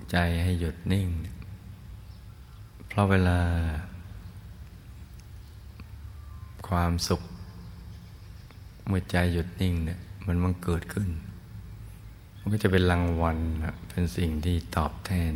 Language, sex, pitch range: Thai, male, 85-100 Hz